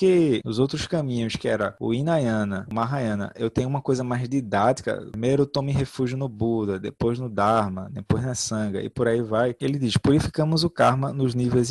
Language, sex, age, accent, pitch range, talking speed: Portuguese, male, 20-39, Brazilian, 115-140 Hz, 195 wpm